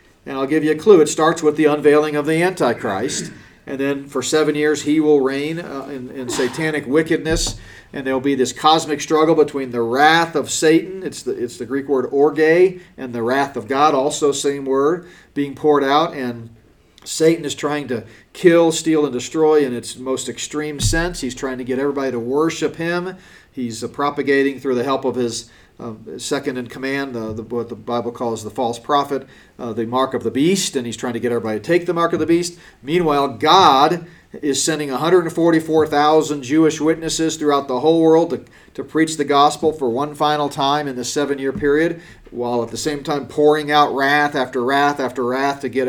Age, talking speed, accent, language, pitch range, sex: 40-59, 205 wpm, American, English, 130-155 Hz, male